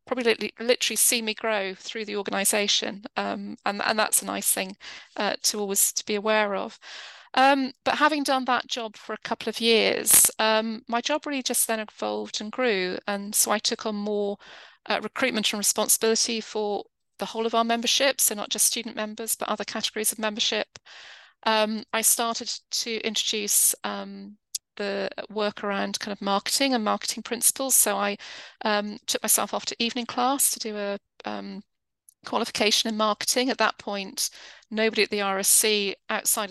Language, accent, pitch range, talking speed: English, British, 200-230 Hz, 175 wpm